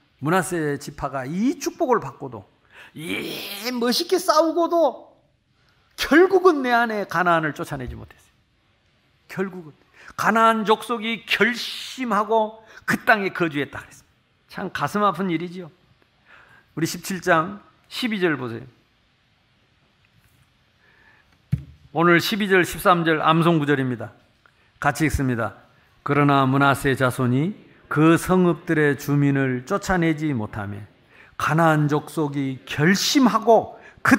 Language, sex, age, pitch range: Korean, male, 50-69, 135-200 Hz